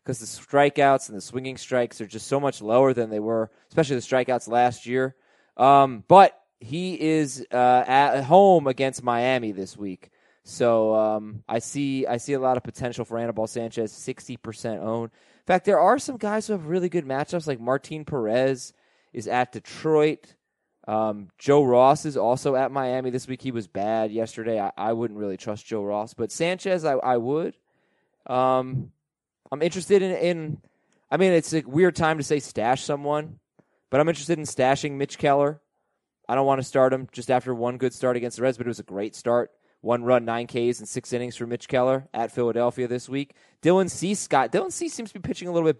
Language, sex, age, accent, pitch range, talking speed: English, male, 20-39, American, 120-155 Hz, 205 wpm